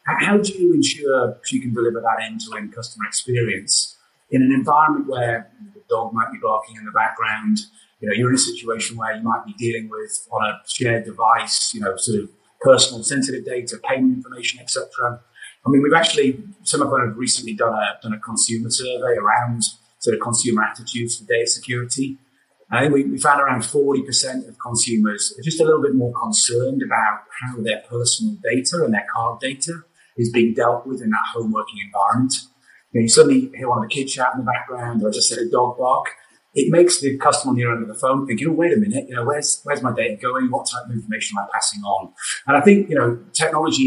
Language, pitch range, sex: English, 115-155 Hz, male